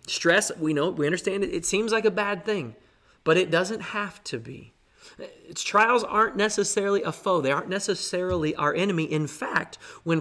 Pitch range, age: 150-200 Hz, 30-49